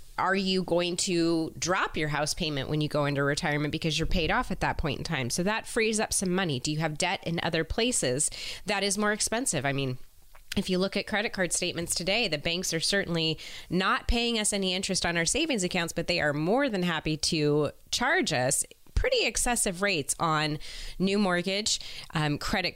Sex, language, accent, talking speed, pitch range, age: female, English, American, 210 wpm, 160-200 Hz, 30-49